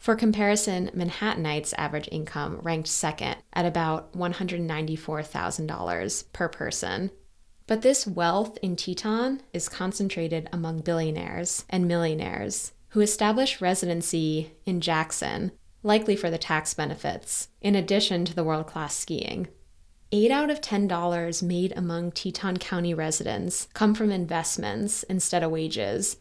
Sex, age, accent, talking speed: female, 20-39, American, 125 wpm